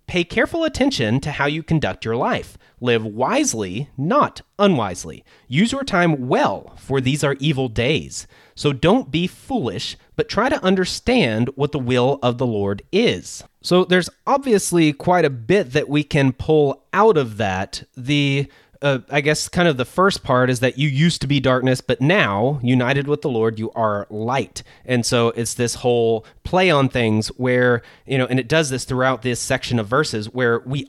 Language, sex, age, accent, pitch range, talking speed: English, male, 30-49, American, 120-155 Hz, 190 wpm